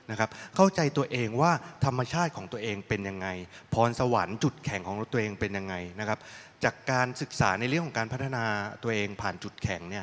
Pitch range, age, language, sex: 110-145 Hz, 20-39, Thai, male